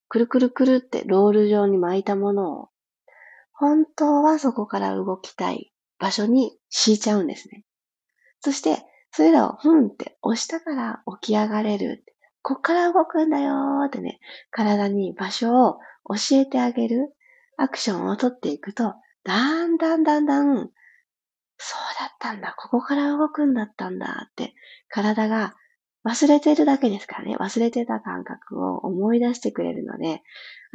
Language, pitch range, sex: Japanese, 195-280 Hz, female